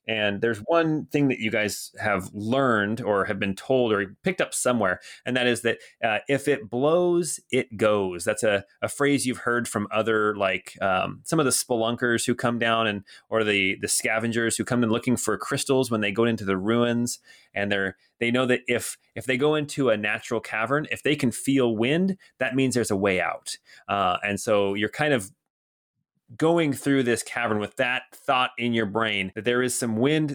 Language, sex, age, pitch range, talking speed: English, male, 30-49, 105-130 Hz, 210 wpm